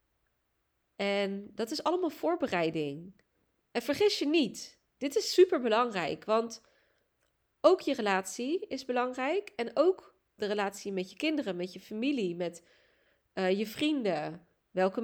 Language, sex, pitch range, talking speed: Dutch, female, 185-245 Hz, 130 wpm